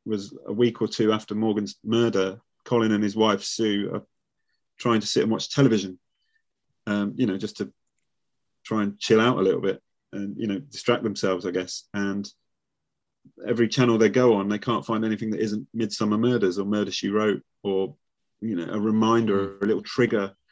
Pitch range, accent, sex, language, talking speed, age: 100-115 Hz, British, male, English, 195 wpm, 30-49